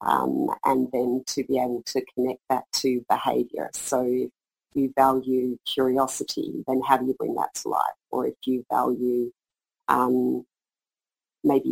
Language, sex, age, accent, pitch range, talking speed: English, female, 40-59, Australian, 130-150 Hz, 155 wpm